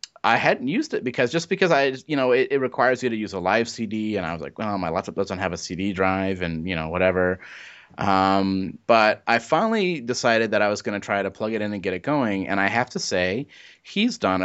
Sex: male